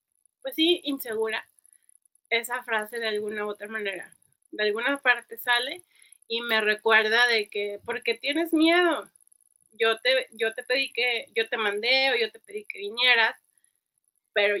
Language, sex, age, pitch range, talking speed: Spanish, female, 30-49, 220-275 Hz, 160 wpm